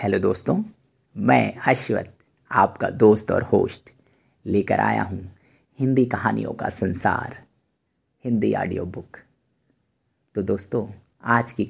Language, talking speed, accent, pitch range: Hindi, 115 wpm, native, 115-145 Hz